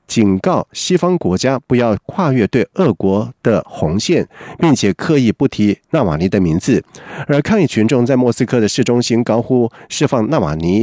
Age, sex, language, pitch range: 50-69, male, Chinese, 105-145 Hz